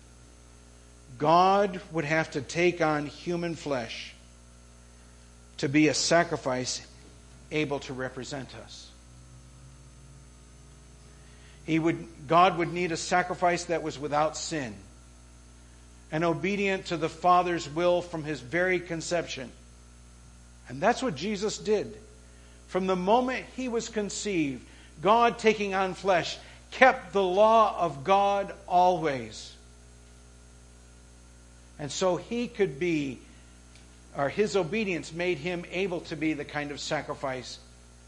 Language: English